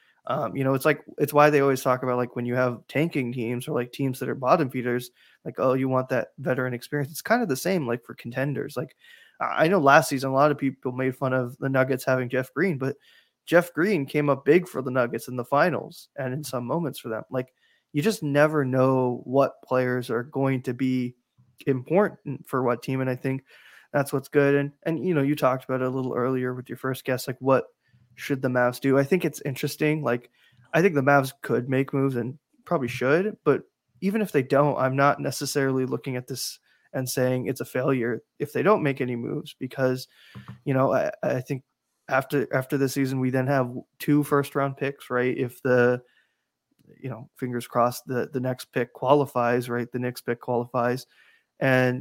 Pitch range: 125-140 Hz